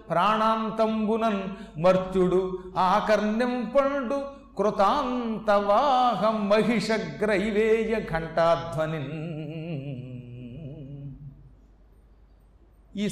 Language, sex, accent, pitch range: Telugu, male, native, 185-245 Hz